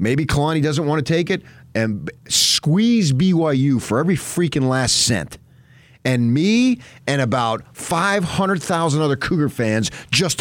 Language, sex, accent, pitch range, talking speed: English, male, American, 130-185 Hz, 140 wpm